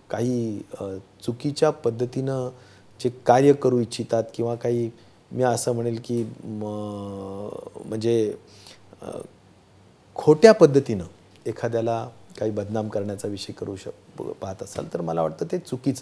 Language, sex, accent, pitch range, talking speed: Marathi, male, native, 100-140 Hz, 85 wpm